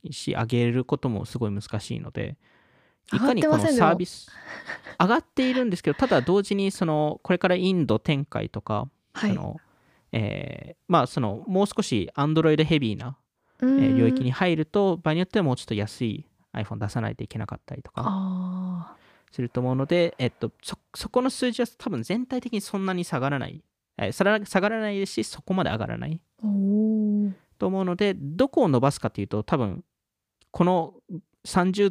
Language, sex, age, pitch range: Japanese, male, 20-39, 120-185 Hz